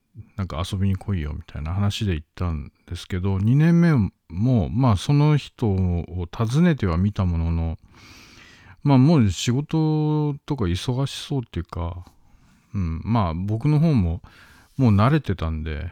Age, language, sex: 50-69, Japanese, male